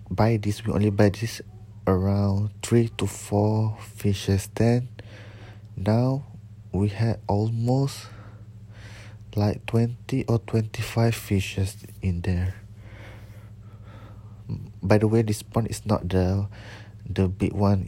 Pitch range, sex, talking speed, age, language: 100-110 Hz, male, 120 wpm, 20-39, English